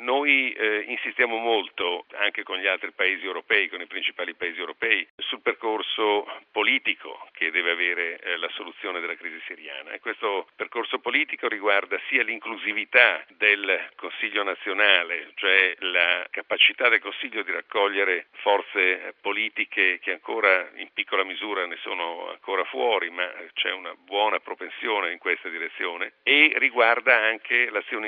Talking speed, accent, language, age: 140 wpm, native, Italian, 50-69